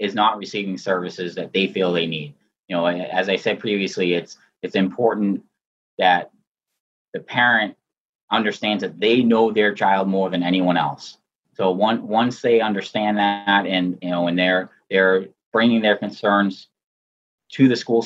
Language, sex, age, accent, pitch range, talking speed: English, male, 30-49, American, 90-110 Hz, 165 wpm